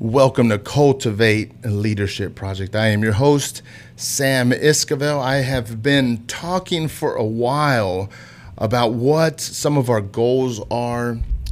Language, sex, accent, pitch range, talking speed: English, male, American, 110-140 Hz, 130 wpm